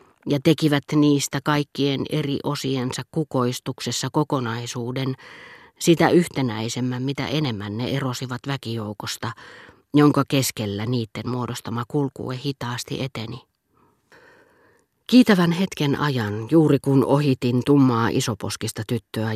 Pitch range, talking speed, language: 120-150 Hz, 95 wpm, Finnish